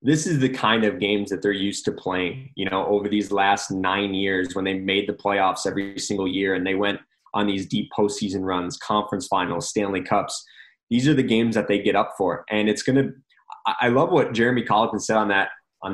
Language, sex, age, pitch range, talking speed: English, male, 20-39, 100-120 Hz, 225 wpm